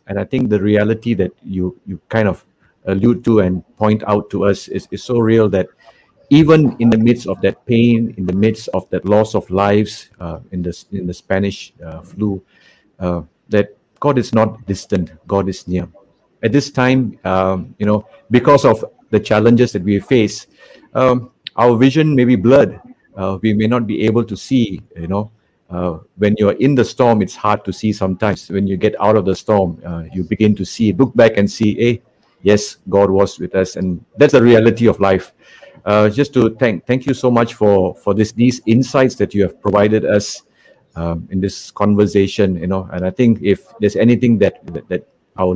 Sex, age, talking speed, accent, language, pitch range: male, 60-79, 205 wpm, Malaysian, English, 95-115 Hz